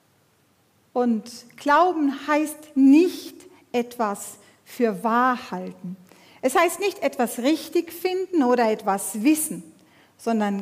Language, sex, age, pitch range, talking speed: German, female, 50-69, 235-305 Hz, 100 wpm